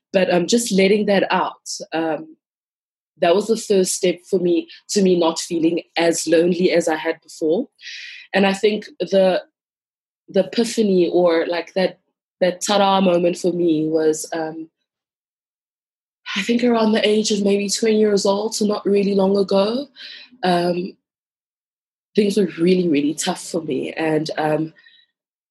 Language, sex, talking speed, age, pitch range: English, female, 155 wpm, 20-39, 170-200 Hz